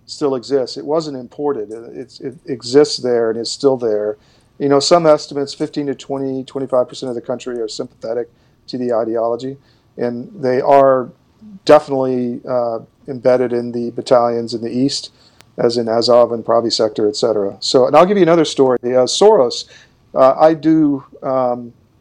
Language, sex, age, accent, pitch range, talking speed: English, male, 50-69, American, 120-140 Hz, 170 wpm